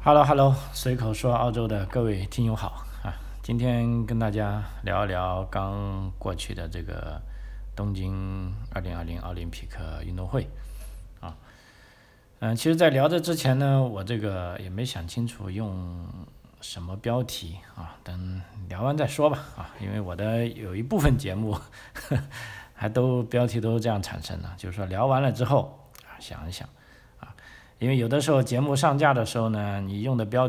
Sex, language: male, Chinese